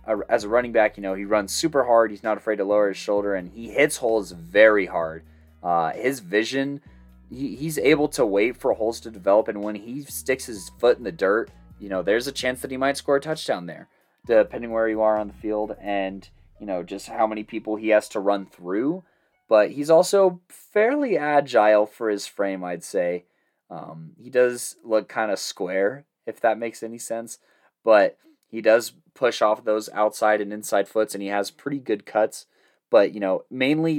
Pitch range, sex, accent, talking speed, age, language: 95-115 Hz, male, American, 205 wpm, 20-39, English